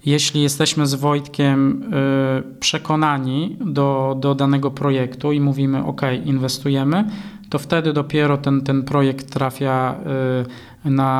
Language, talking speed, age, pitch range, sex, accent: Polish, 115 wpm, 20-39, 130-145 Hz, male, native